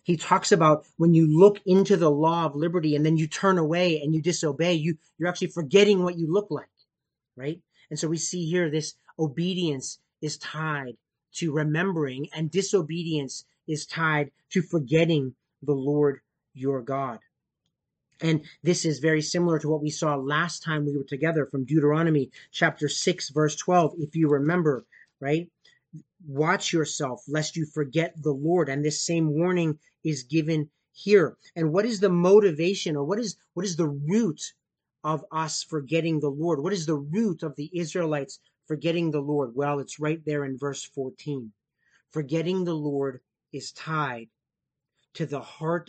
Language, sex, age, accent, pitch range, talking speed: English, male, 30-49, American, 145-170 Hz, 165 wpm